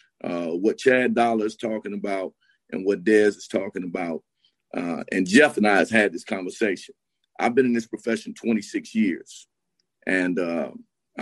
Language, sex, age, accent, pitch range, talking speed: English, male, 50-69, American, 110-150 Hz, 165 wpm